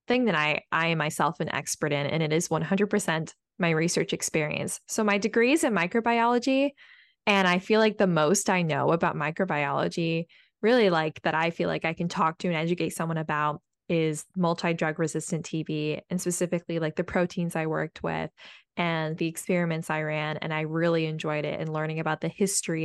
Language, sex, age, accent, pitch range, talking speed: English, female, 20-39, American, 155-190 Hz, 190 wpm